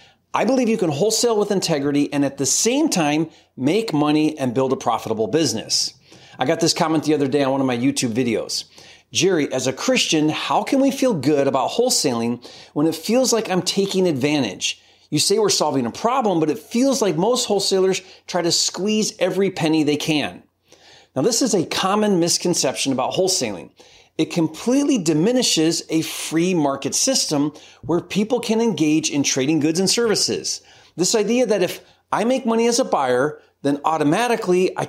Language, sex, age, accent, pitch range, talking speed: English, male, 30-49, American, 145-205 Hz, 180 wpm